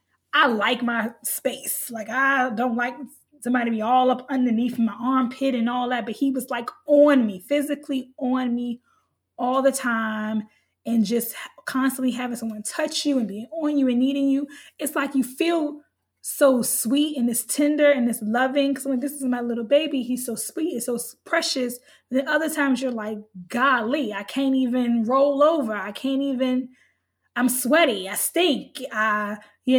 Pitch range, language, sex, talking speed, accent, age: 225-270 Hz, English, female, 185 wpm, American, 20-39